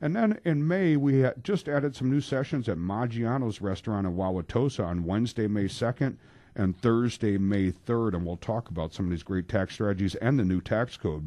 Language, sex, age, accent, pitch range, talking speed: English, male, 60-79, American, 90-120 Hz, 200 wpm